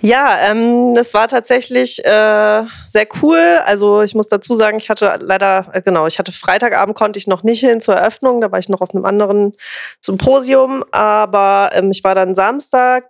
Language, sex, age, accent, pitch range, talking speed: German, female, 20-39, German, 190-245 Hz, 175 wpm